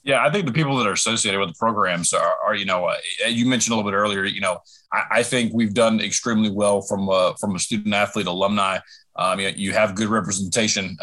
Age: 30-49